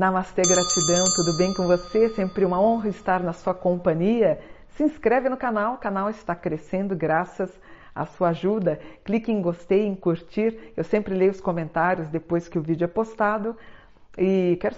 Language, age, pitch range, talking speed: Portuguese, 50-69, 175-215 Hz, 175 wpm